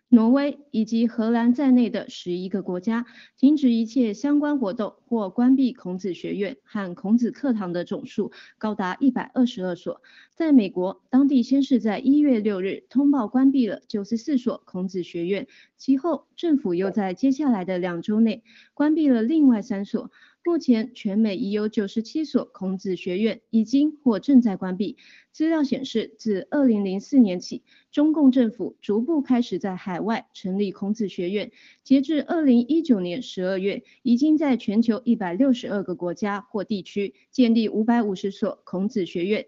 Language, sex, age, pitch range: Chinese, female, 20-39, 200-270 Hz